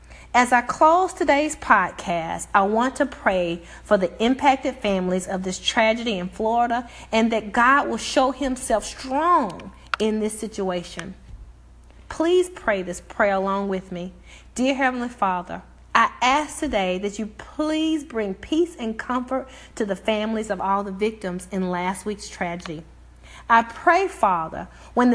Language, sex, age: English, female, 40-59